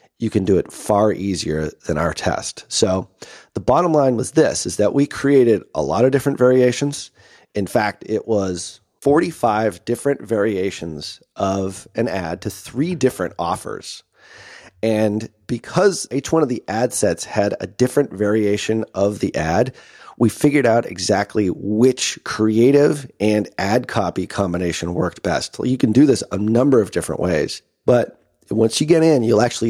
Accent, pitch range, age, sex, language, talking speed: American, 100-130 Hz, 30-49, male, English, 165 wpm